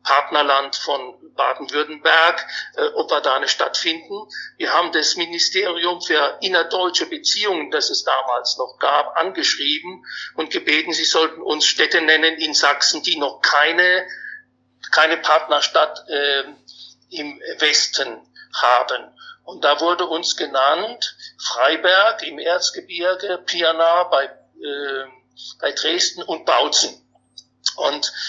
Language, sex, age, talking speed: German, male, 60-79, 120 wpm